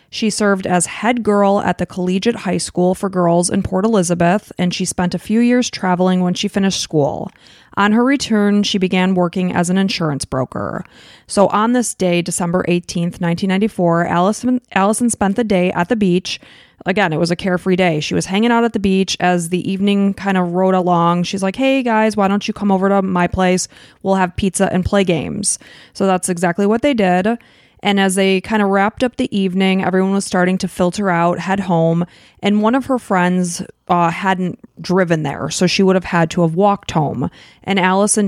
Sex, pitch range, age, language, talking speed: female, 175-205 Hz, 20-39, English, 205 wpm